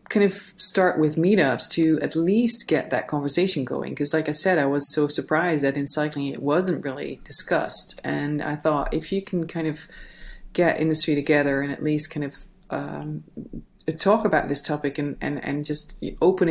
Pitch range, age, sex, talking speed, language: 145-165 Hz, 30-49, female, 195 wpm, German